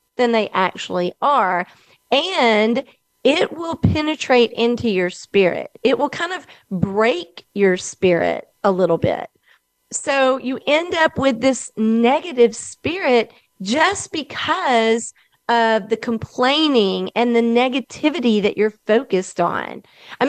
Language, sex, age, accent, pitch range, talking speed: English, female, 40-59, American, 200-280 Hz, 125 wpm